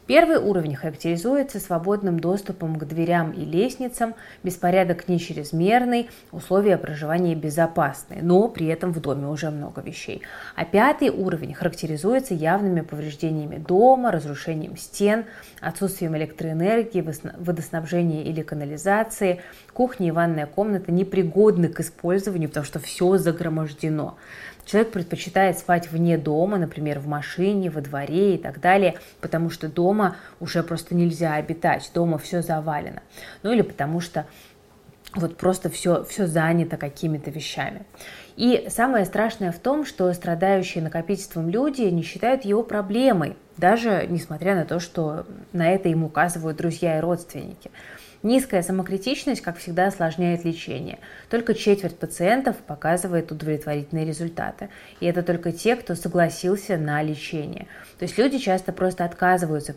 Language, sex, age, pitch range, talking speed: Russian, female, 20-39, 160-195 Hz, 135 wpm